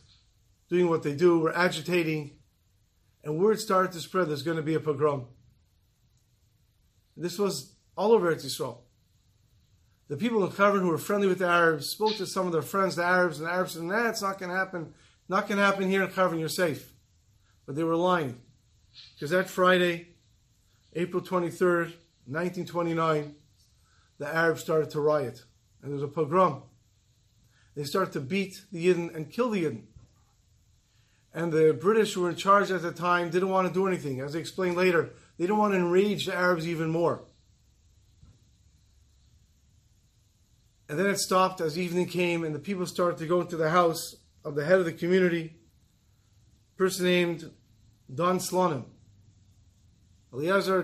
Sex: male